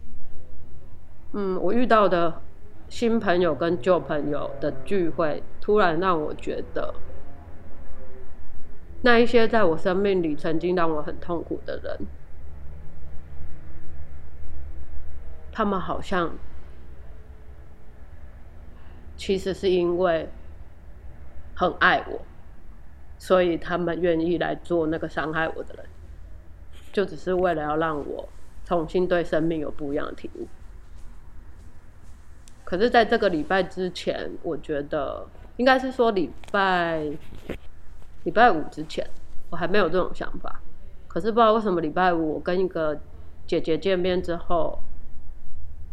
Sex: female